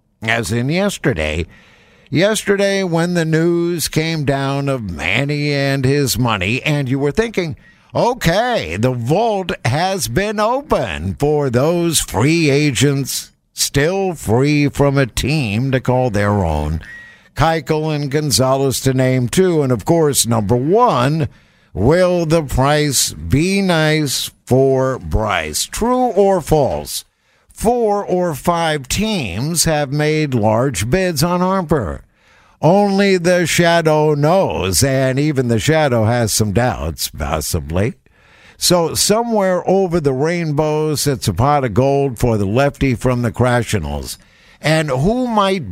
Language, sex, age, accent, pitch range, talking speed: English, male, 60-79, American, 120-175 Hz, 130 wpm